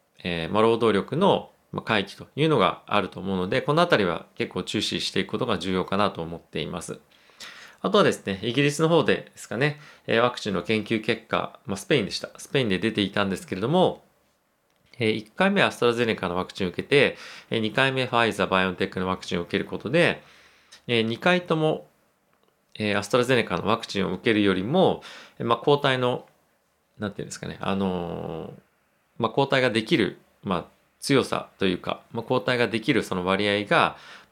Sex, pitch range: male, 95-120 Hz